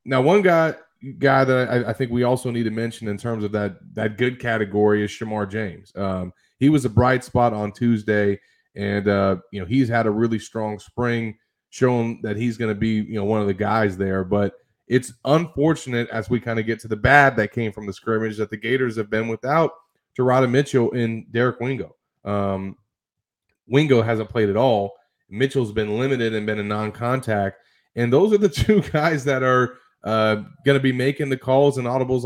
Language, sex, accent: English, male, American